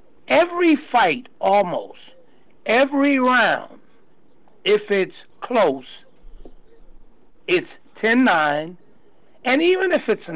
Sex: male